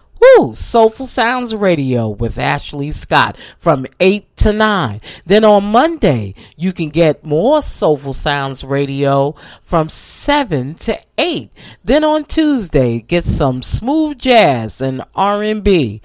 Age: 40-59